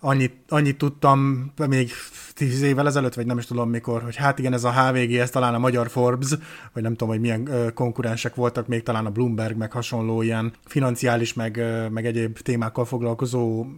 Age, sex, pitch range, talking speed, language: 30-49, male, 115-135 Hz, 185 wpm, Hungarian